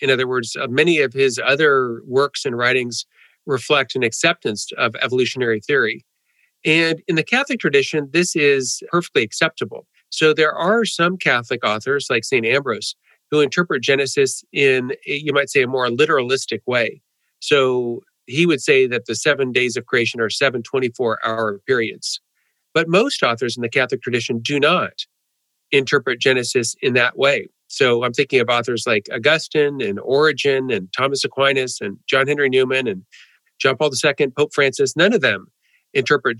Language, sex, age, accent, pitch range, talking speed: English, male, 50-69, American, 125-155 Hz, 165 wpm